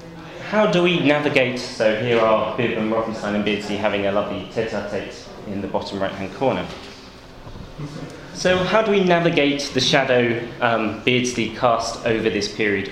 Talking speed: 165 wpm